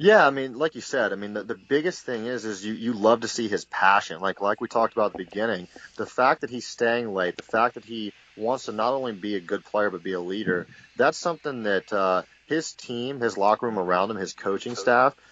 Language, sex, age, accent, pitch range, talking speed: English, male, 30-49, American, 100-120 Hz, 255 wpm